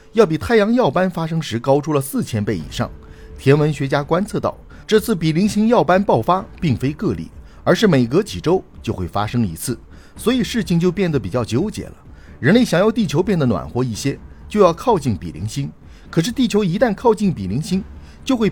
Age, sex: 50-69, male